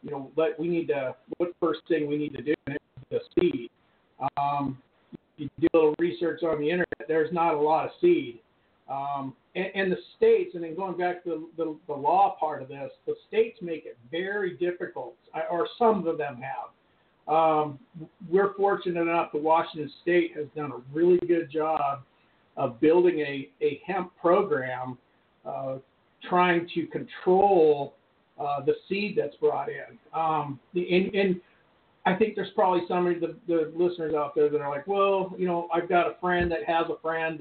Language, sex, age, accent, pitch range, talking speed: English, male, 50-69, American, 150-190 Hz, 185 wpm